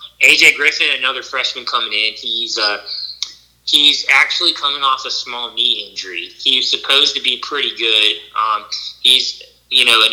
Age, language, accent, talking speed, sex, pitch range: 20-39, English, American, 160 wpm, male, 105-130 Hz